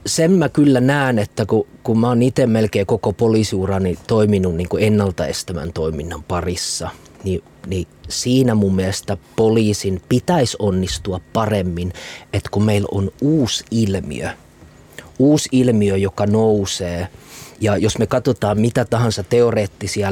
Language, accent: Finnish, native